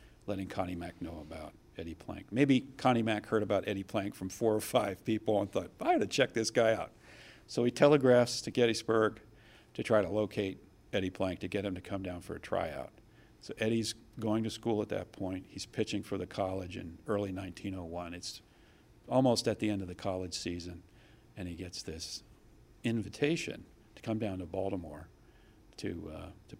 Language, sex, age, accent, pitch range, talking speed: English, male, 50-69, American, 90-110 Hz, 195 wpm